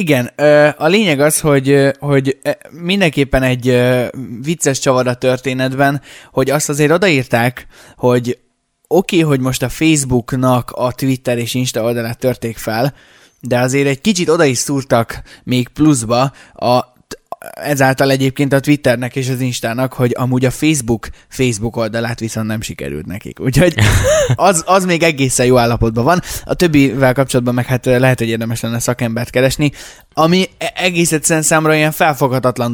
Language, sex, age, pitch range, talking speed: Hungarian, male, 20-39, 115-140 Hz, 150 wpm